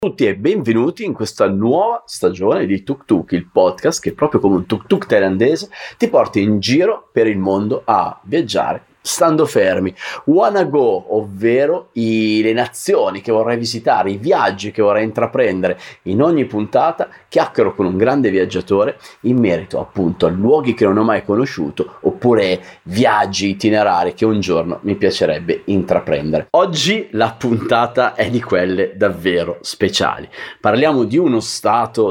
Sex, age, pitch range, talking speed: male, 30-49, 105-145 Hz, 155 wpm